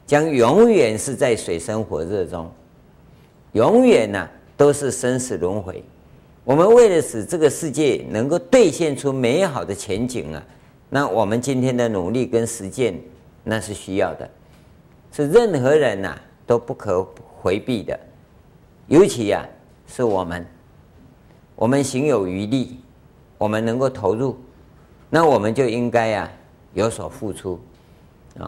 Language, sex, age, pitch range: Chinese, male, 50-69, 105-140 Hz